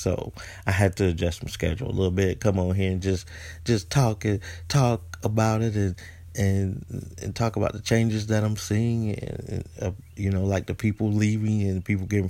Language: English